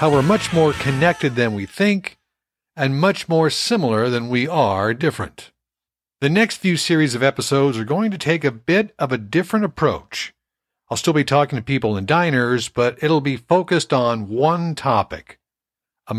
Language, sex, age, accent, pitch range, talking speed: English, male, 60-79, American, 105-140 Hz, 180 wpm